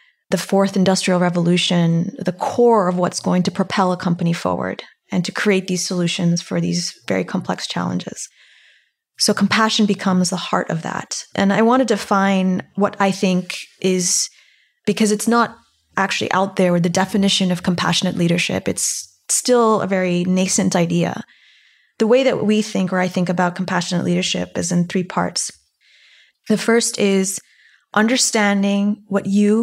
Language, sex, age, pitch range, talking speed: English, female, 20-39, 180-215 Hz, 160 wpm